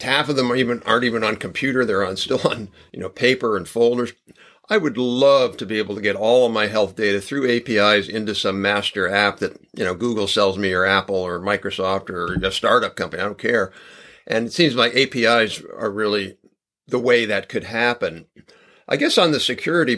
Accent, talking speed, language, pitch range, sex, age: American, 210 wpm, English, 100-125 Hz, male, 50-69